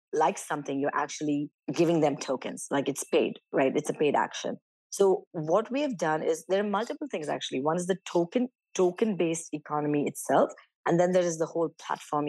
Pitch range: 150-185 Hz